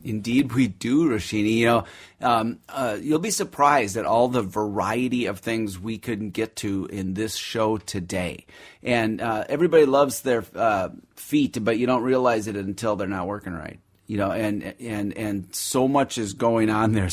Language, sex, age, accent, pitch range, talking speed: English, male, 30-49, American, 105-135 Hz, 185 wpm